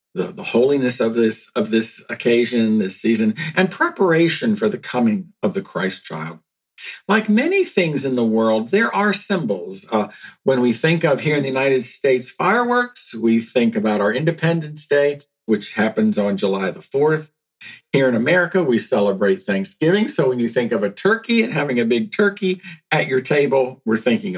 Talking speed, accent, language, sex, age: 180 wpm, American, English, male, 50-69